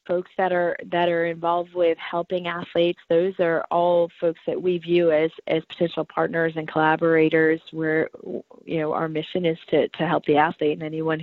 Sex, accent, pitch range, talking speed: female, American, 160-185 Hz, 185 wpm